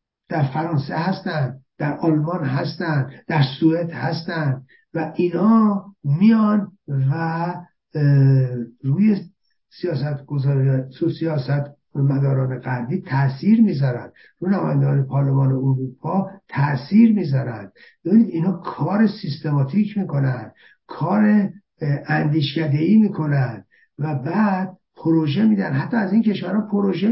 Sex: male